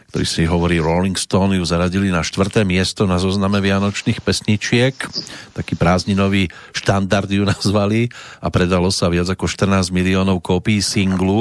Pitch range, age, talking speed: 90-110 Hz, 40-59, 145 wpm